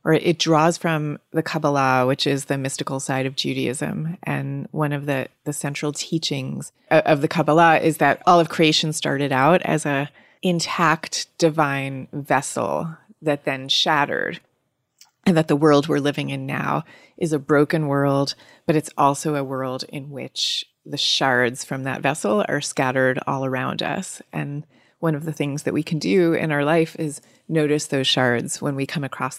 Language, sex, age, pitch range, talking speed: English, female, 30-49, 140-160 Hz, 180 wpm